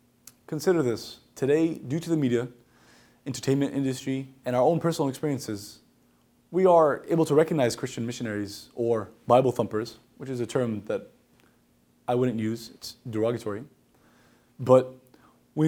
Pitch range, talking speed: 120-155 Hz, 140 wpm